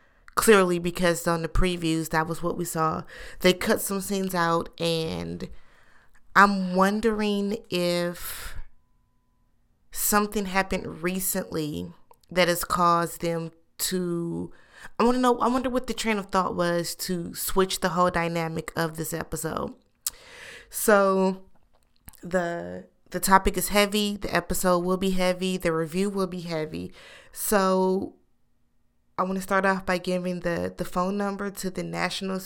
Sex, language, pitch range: female, English, 170-195 Hz